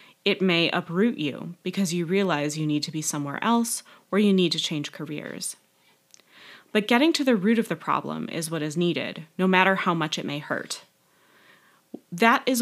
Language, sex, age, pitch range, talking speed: English, female, 20-39, 160-195 Hz, 190 wpm